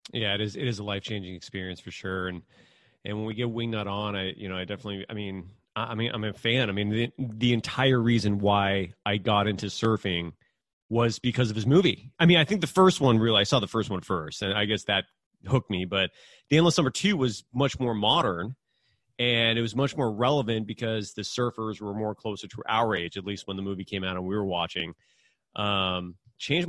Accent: American